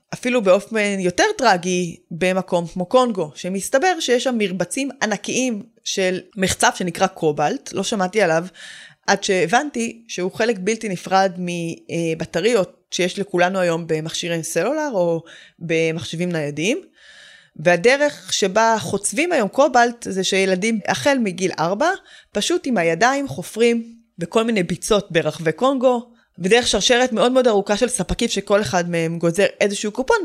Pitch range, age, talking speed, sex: 170-235 Hz, 20-39, 130 wpm, female